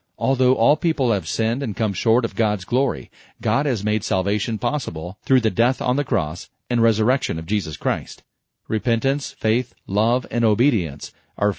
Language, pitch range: English, 105-130 Hz